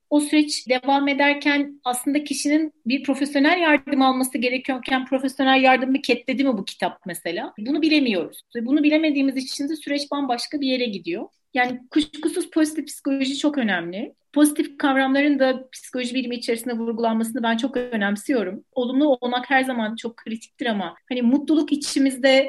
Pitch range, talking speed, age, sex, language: 260-310 Hz, 150 wpm, 40-59, female, Turkish